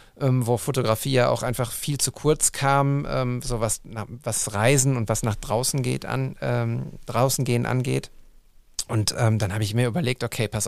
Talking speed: 185 wpm